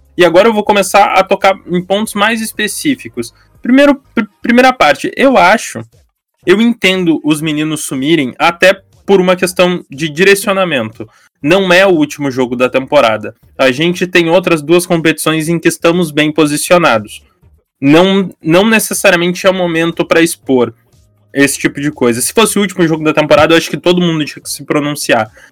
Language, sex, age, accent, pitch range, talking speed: Portuguese, male, 20-39, Brazilian, 140-185 Hz, 170 wpm